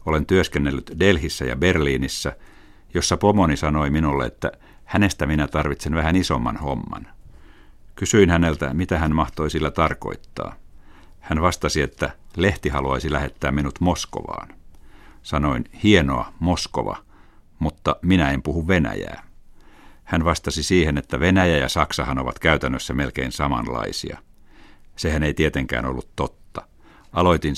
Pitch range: 70-90 Hz